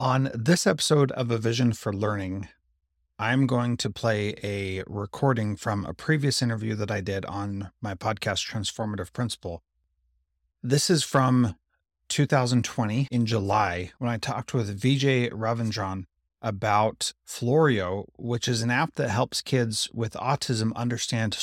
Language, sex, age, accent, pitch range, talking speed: English, male, 30-49, American, 95-125 Hz, 140 wpm